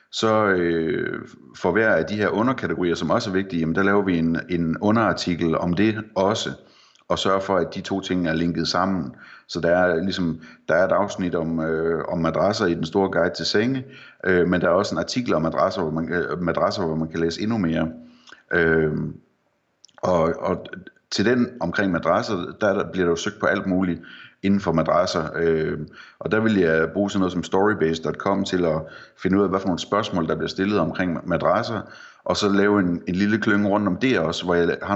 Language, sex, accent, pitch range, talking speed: Danish, male, native, 85-100 Hz, 215 wpm